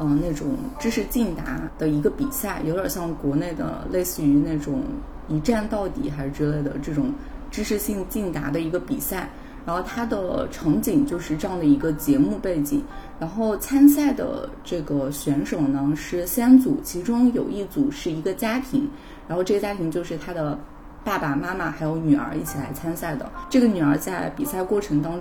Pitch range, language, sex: 150-220 Hz, Chinese, female